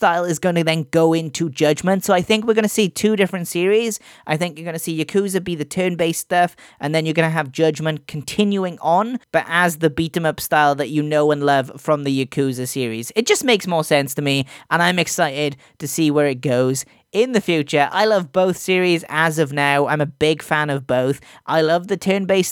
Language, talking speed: English, 230 wpm